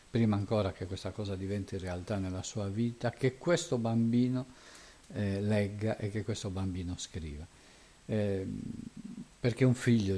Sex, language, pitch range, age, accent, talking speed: male, Italian, 95-115 Hz, 50-69, native, 140 wpm